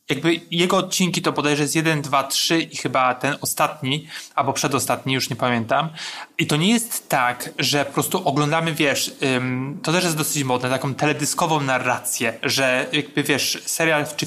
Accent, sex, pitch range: native, male, 135-160 Hz